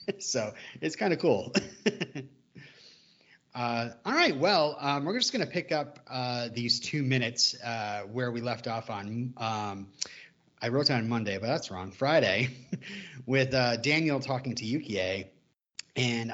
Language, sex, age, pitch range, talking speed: English, male, 30-49, 110-135 Hz, 155 wpm